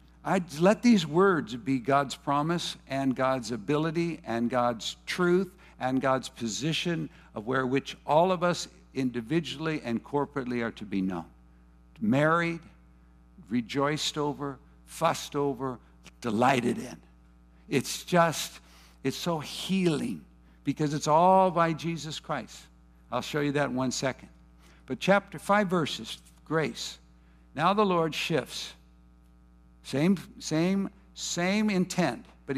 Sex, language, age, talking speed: male, English, 60-79, 125 wpm